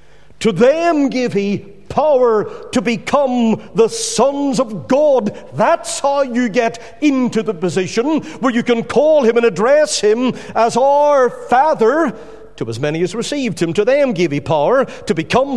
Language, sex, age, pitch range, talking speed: English, male, 50-69, 175-265 Hz, 160 wpm